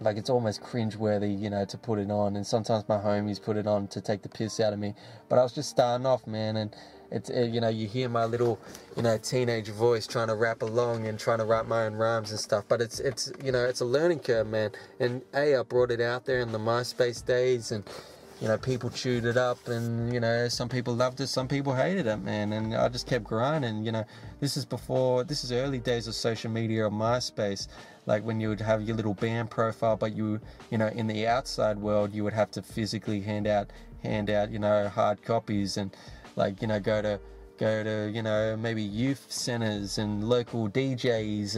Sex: male